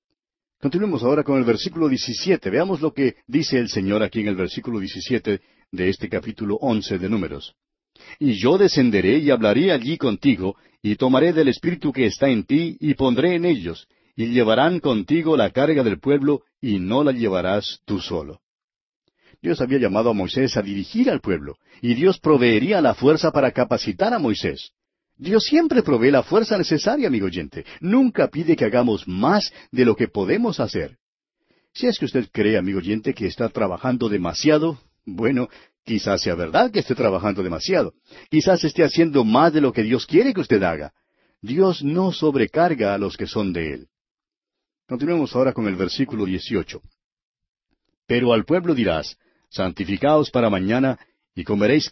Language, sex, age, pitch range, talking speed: Spanish, male, 50-69, 105-155 Hz, 170 wpm